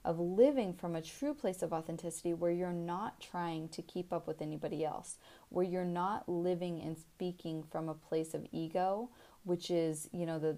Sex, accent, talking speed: female, American, 195 wpm